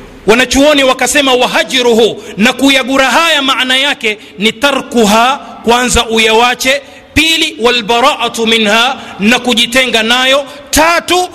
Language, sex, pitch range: Swahili, male, 225-280 Hz